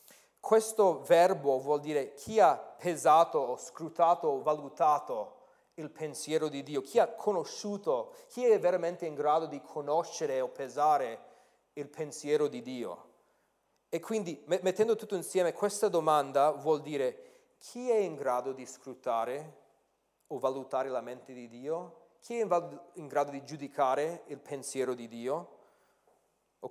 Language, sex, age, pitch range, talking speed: Italian, male, 40-59, 140-225 Hz, 140 wpm